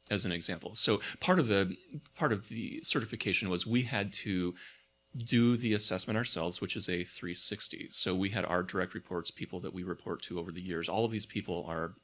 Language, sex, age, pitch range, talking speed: English, male, 30-49, 90-115 Hz, 210 wpm